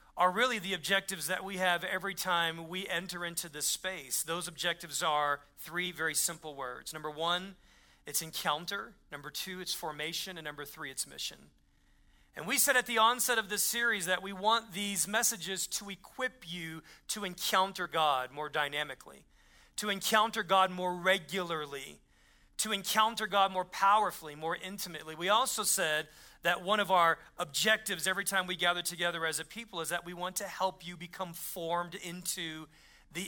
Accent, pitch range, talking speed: American, 160-195 Hz, 170 wpm